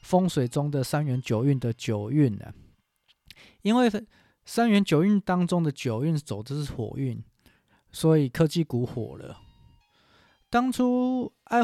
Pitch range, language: 120-165 Hz, Chinese